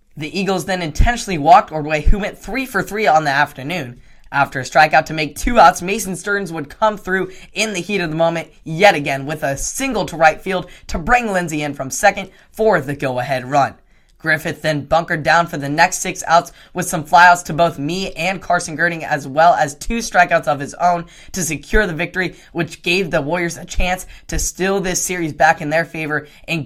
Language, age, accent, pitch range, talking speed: English, 10-29, American, 145-175 Hz, 215 wpm